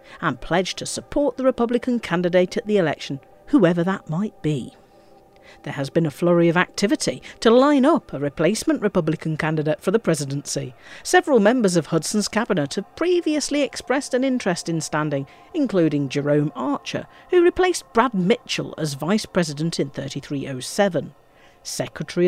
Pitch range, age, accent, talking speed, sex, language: 160-245 Hz, 50-69, British, 150 wpm, female, English